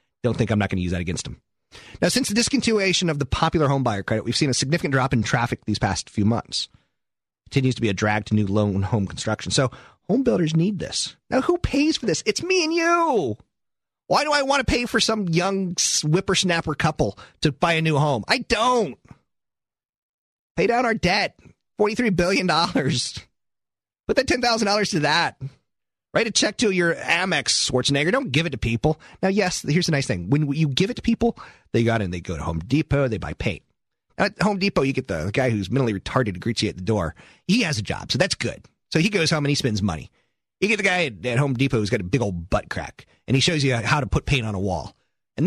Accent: American